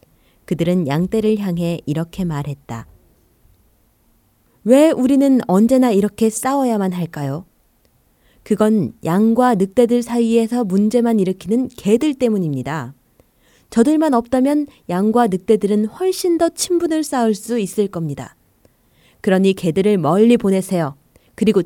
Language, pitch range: Korean, 150-230 Hz